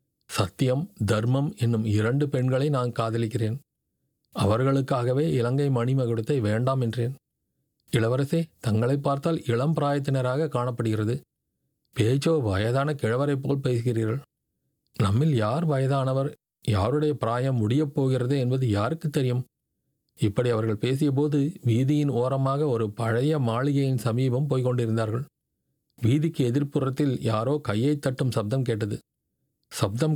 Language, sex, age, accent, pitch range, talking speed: Tamil, male, 40-59, native, 115-145 Hz, 100 wpm